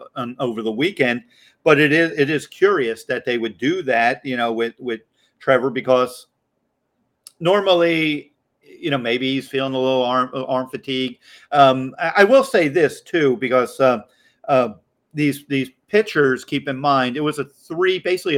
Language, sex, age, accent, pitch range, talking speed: English, male, 50-69, American, 125-150 Hz, 170 wpm